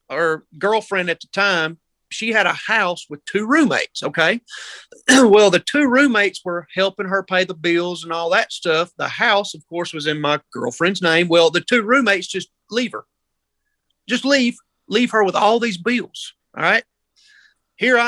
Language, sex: English, male